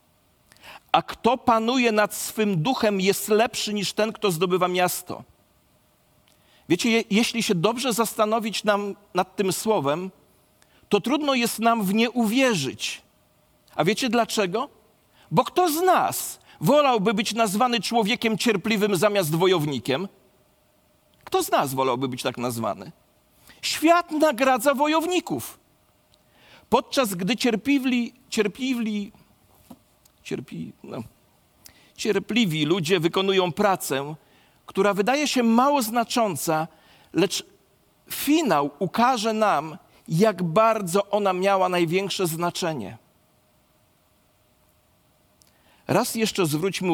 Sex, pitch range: male, 170-230 Hz